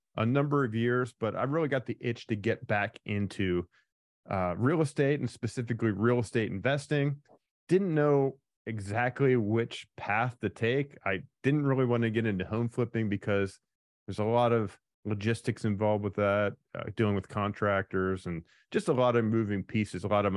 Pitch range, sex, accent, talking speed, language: 105-135 Hz, male, American, 180 wpm, English